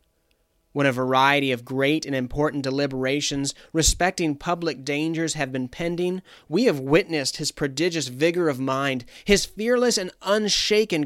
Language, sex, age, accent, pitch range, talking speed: English, male, 30-49, American, 135-175 Hz, 140 wpm